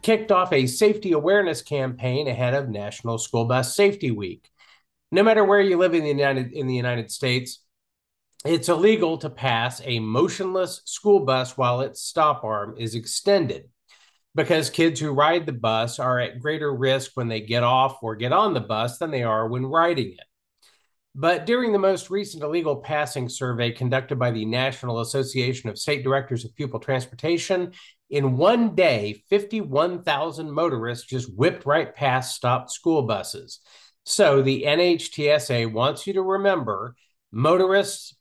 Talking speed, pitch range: 160 wpm, 120-170 Hz